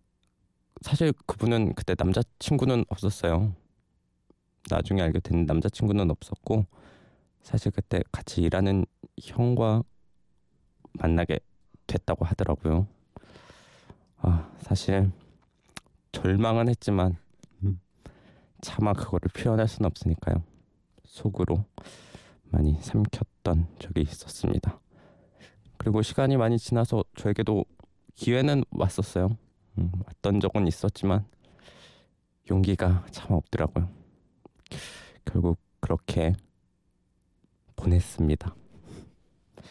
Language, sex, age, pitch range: Korean, male, 20-39, 85-105 Hz